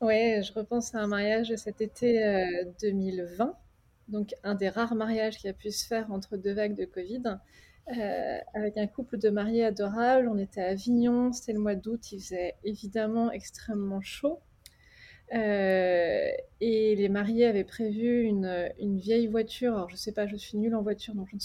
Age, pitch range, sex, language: 20-39, 205-235 Hz, female, French